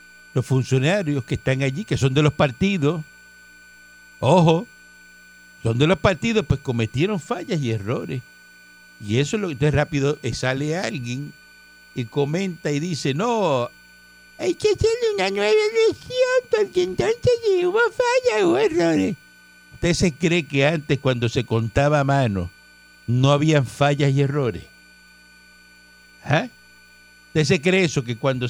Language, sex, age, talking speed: Spanish, male, 60-79, 145 wpm